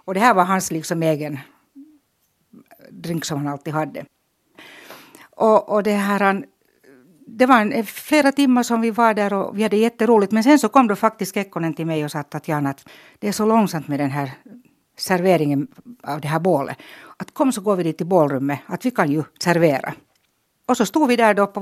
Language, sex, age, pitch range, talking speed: Swedish, female, 60-79, 165-235 Hz, 205 wpm